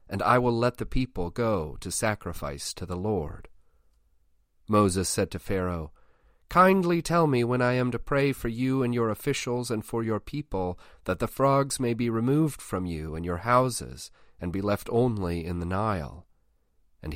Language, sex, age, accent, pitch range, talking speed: English, male, 40-59, American, 85-120 Hz, 180 wpm